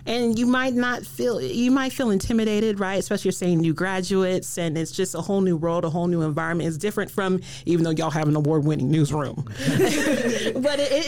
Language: English